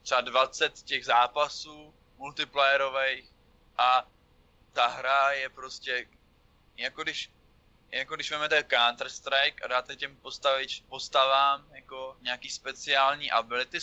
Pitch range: 125-140 Hz